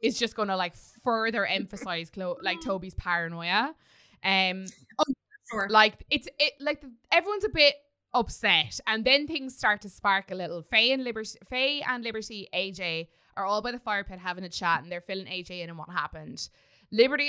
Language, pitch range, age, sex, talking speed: English, 185-250 Hz, 20-39, female, 180 wpm